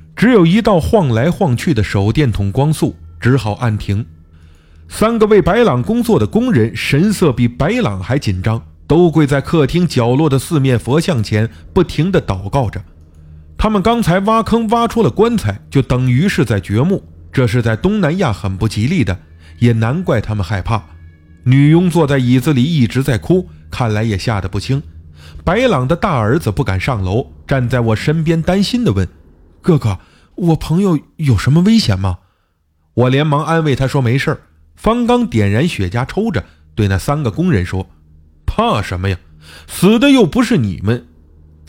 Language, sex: Chinese, male